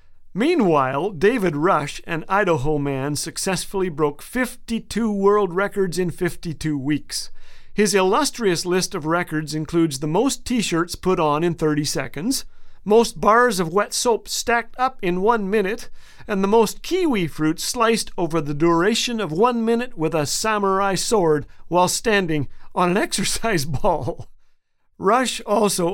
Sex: male